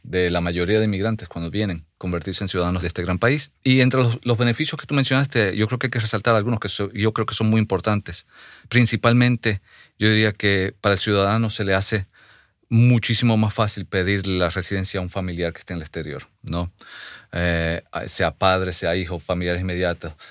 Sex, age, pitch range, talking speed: male, 40-59, 90-110 Hz, 205 wpm